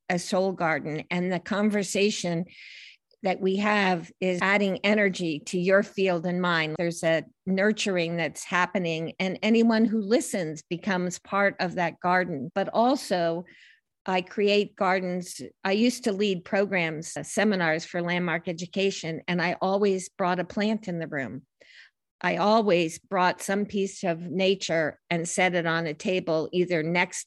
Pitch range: 170-195 Hz